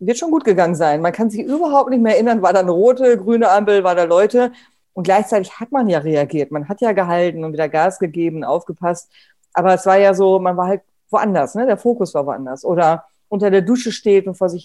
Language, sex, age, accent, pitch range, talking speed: German, female, 40-59, German, 165-210 Hz, 235 wpm